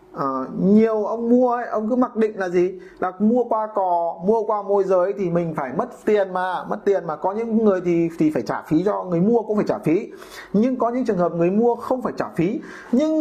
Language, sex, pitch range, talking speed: Vietnamese, male, 170-220 Hz, 250 wpm